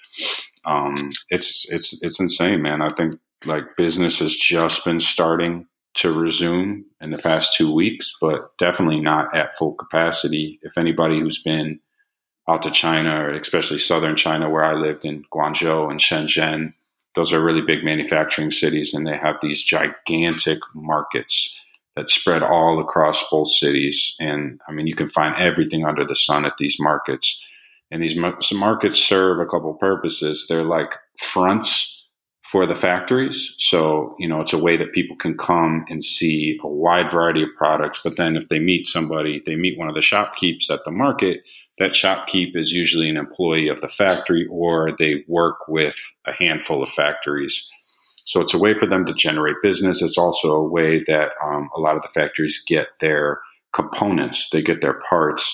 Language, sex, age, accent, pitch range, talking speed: English, male, 40-59, American, 75-85 Hz, 180 wpm